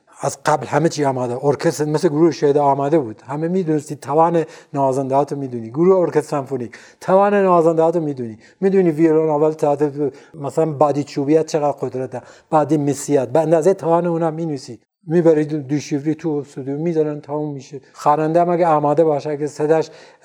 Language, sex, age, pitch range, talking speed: Persian, male, 60-79, 135-165 Hz, 160 wpm